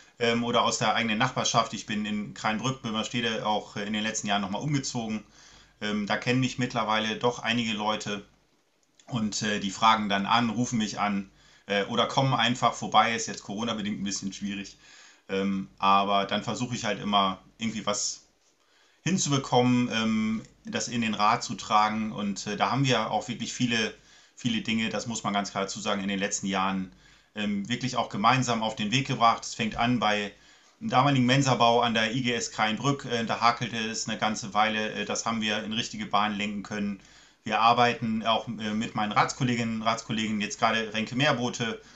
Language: German